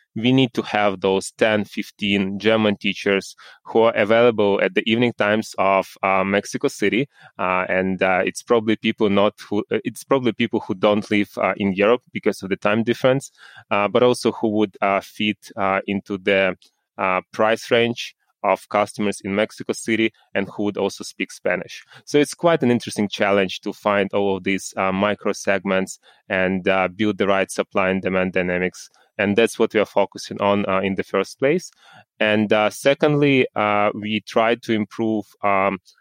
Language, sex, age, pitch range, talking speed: English, male, 20-39, 95-110 Hz, 185 wpm